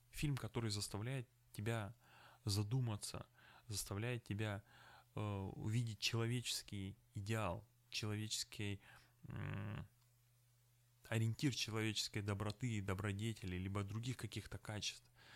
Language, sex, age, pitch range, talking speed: Russian, male, 20-39, 105-120 Hz, 85 wpm